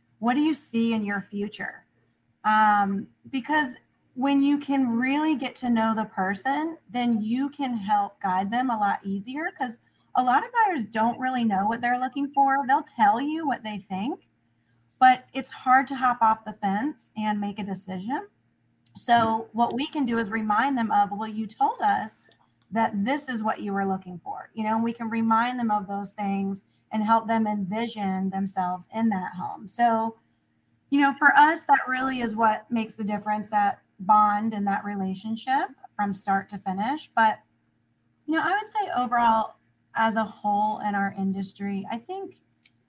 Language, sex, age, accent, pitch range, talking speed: English, female, 30-49, American, 195-255 Hz, 185 wpm